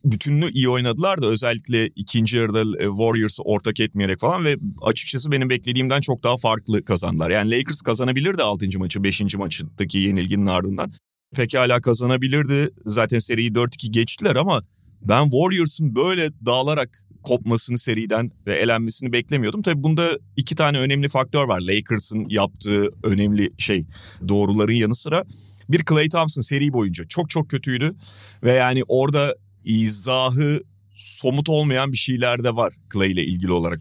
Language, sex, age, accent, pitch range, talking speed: Turkish, male, 30-49, native, 100-130 Hz, 140 wpm